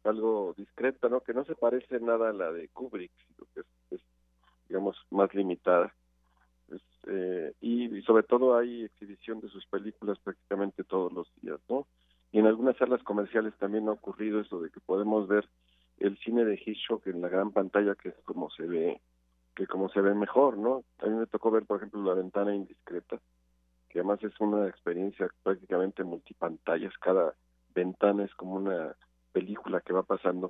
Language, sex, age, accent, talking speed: Spanish, male, 50-69, Mexican, 185 wpm